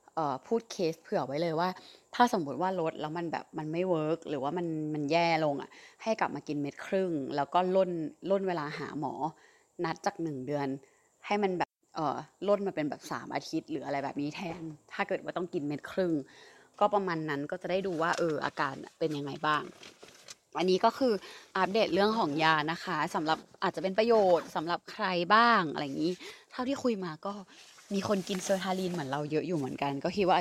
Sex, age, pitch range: female, 20-39, 150-190 Hz